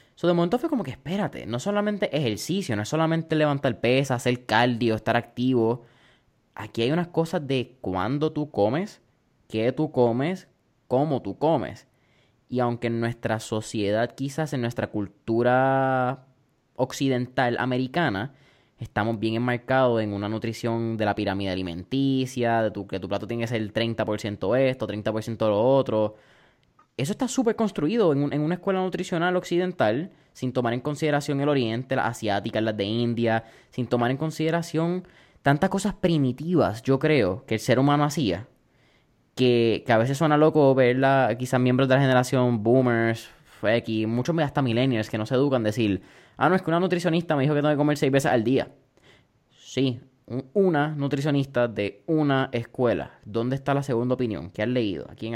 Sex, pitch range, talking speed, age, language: male, 115-145 Hz, 175 wpm, 20-39, Spanish